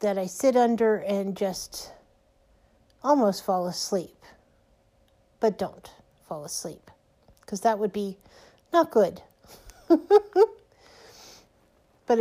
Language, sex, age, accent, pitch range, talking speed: English, female, 50-69, American, 190-250 Hz, 100 wpm